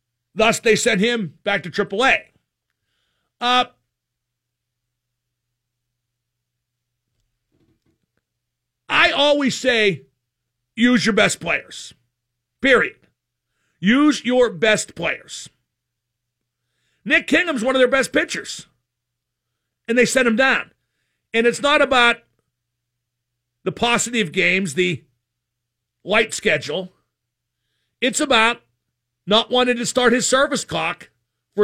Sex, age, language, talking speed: male, 50-69, English, 100 wpm